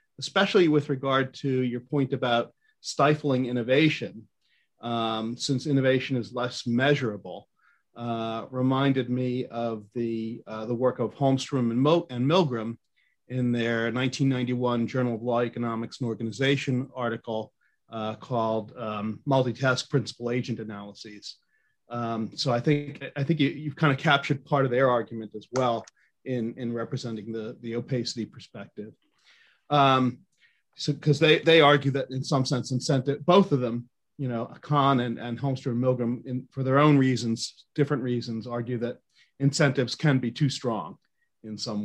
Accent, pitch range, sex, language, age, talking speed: American, 115-140 Hz, male, English, 40-59, 150 wpm